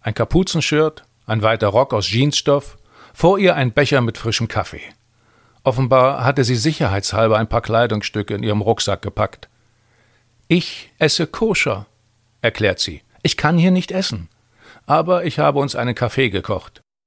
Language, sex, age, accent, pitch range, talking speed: German, male, 40-59, German, 110-150 Hz, 150 wpm